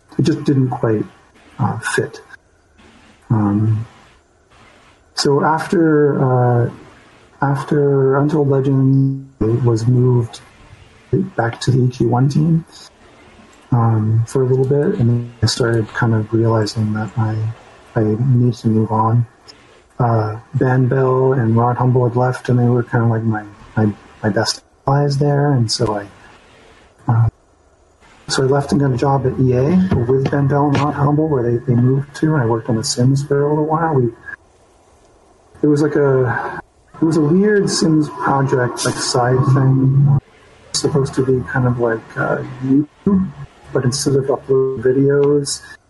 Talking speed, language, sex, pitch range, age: 155 wpm, English, male, 120-140 Hz, 40-59